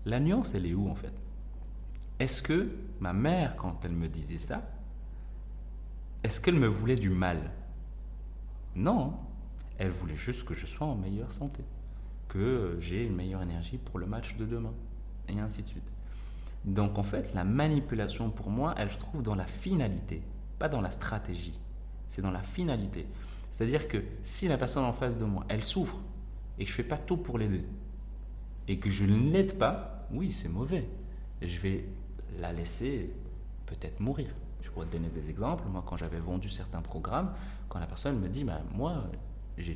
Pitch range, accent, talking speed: 90-115 Hz, French, 185 wpm